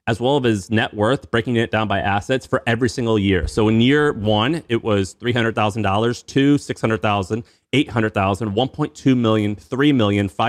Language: English